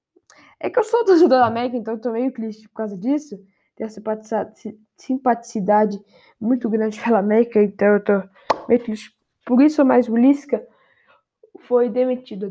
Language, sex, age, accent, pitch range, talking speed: Portuguese, female, 10-29, Brazilian, 215-280 Hz, 165 wpm